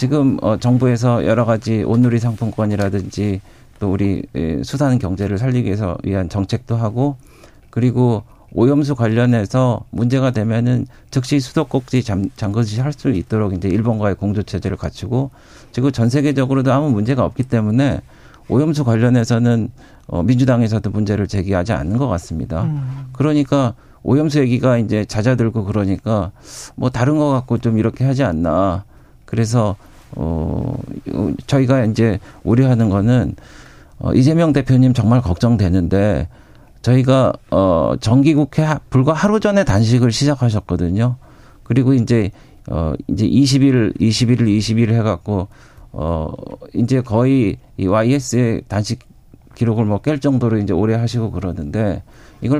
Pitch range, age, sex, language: 105-130 Hz, 50-69, male, Korean